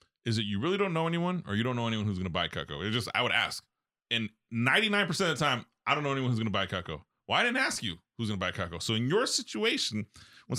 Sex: male